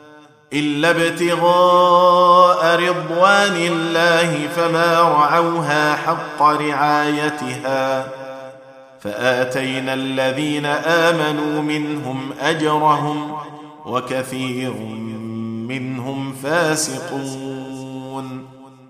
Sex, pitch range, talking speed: male, 145-175 Hz, 50 wpm